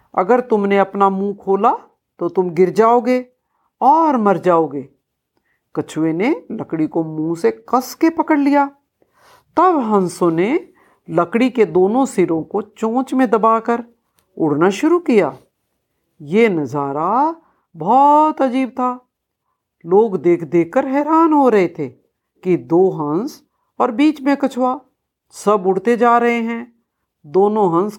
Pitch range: 175-275 Hz